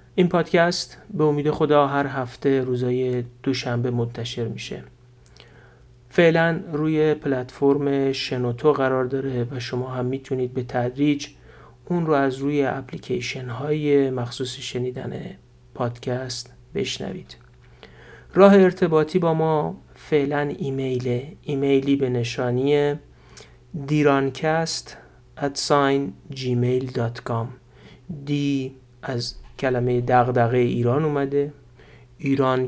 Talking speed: 95 wpm